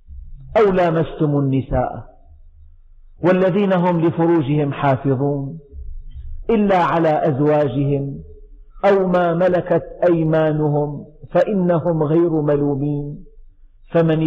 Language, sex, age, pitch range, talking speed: Arabic, male, 50-69, 125-175 Hz, 75 wpm